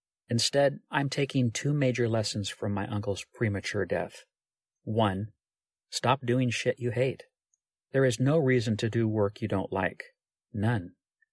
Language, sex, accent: English, male, American